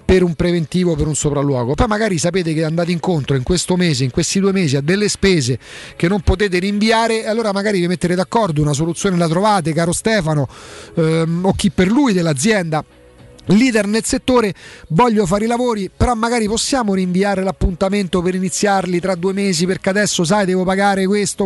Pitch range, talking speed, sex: 160-210 Hz, 185 wpm, male